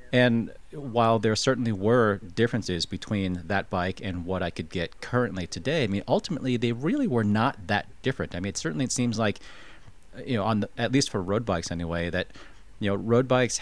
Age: 30-49